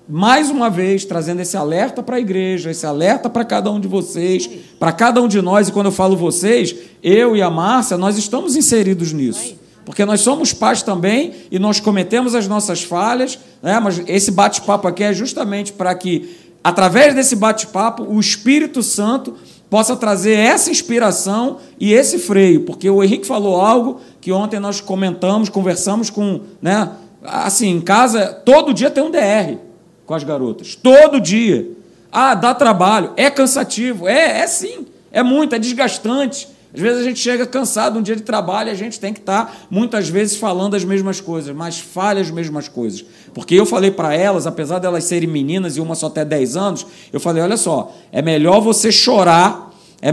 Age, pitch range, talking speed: 40-59, 185-235 Hz, 190 wpm